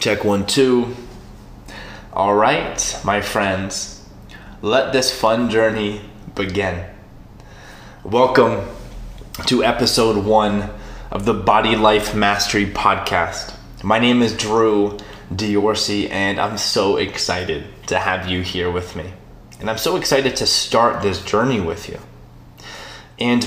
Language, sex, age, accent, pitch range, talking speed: English, male, 20-39, American, 100-125 Hz, 125 wpm